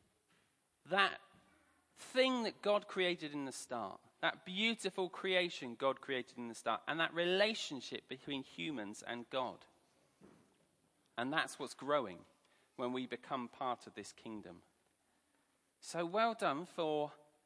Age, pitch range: 40-59, 150-230 Hz